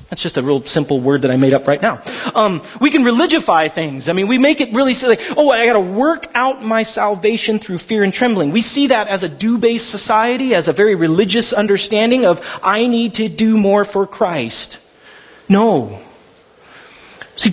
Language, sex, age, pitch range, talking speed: English, male, 30-49, 190-255 Hz, 200 wpm